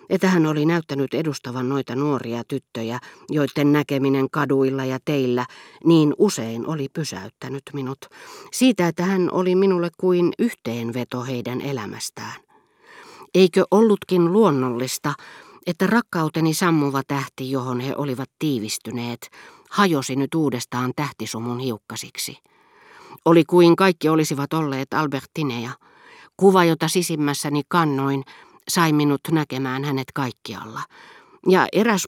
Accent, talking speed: native, 110 wpm